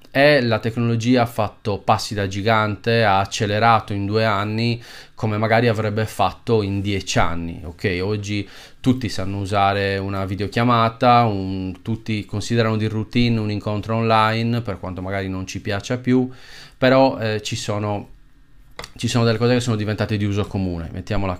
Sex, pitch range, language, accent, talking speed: male, 105-130 Hz, Italian, native, 155 wpm